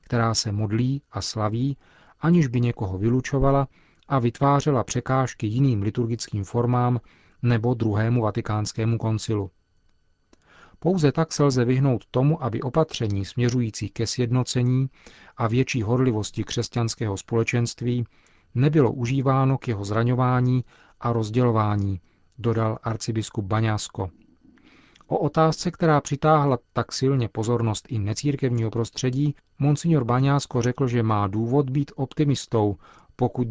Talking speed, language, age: 115 wpm, Czech, 40-59